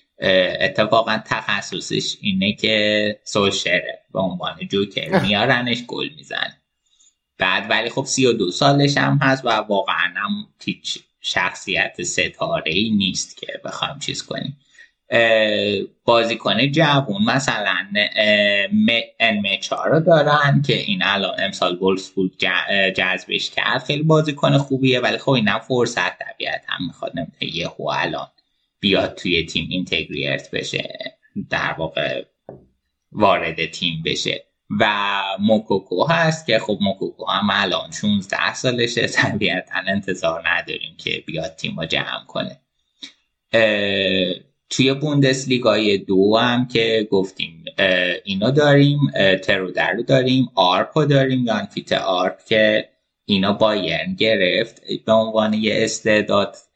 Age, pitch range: 20-39, 100-135 Hz